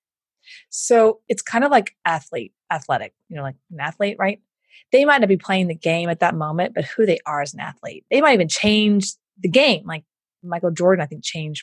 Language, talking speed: English, 215 wpm